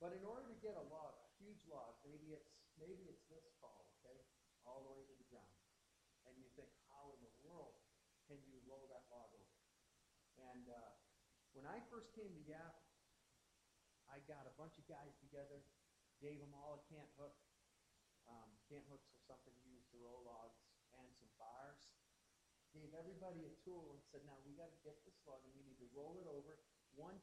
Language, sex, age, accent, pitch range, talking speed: English, male, 40-59, American, 130-160 Hz, 200 wpm